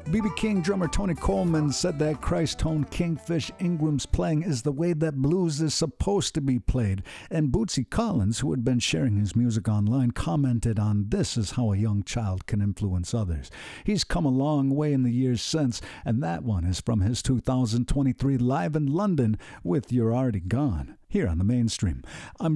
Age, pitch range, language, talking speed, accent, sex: 50-69, 115-155 Hz, English, 185 wpm, American, male